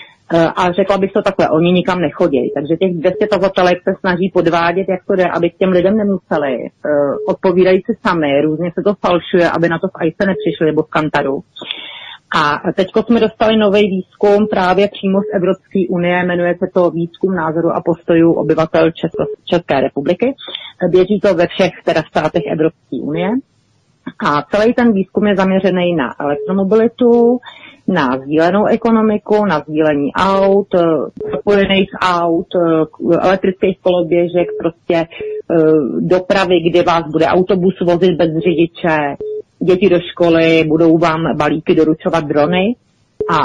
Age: 40-59